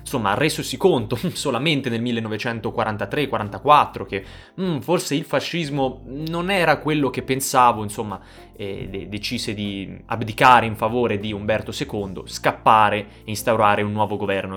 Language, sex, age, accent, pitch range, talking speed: Italian, male, 20-39, native, 105-125 Hz, 135 wpm